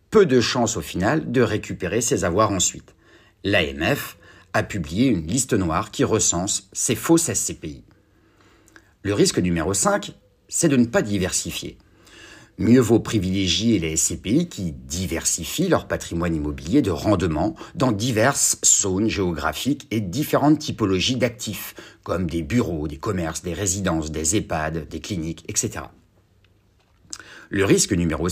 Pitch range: 85-120 Hz